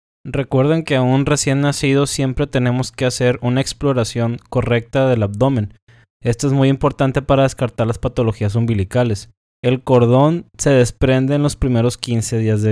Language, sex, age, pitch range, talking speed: Spanish, male, 20-39, 115-135 Hz, 160 wpm